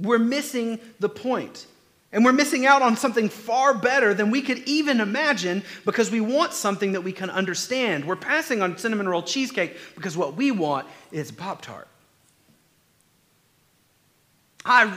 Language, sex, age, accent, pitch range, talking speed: English, male, 40-59, American, 175-230 Hz, 150 wpm